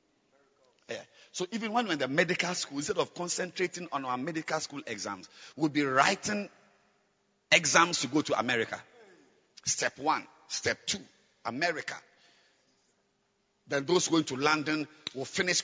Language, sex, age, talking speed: English, male, 50-69, 135 wpm